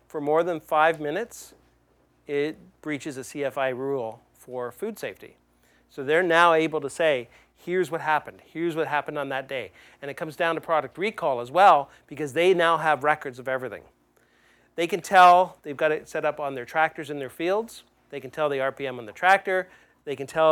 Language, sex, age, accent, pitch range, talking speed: English, male, 40-59, American, 145-185 Hz, 200 wpm